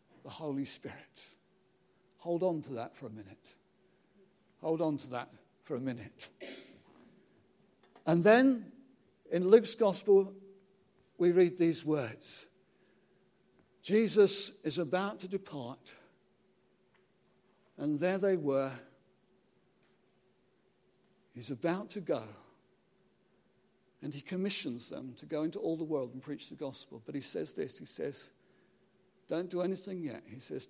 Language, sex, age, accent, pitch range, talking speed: English, male, 60-79, British, 155-195 Hz, 125 wpm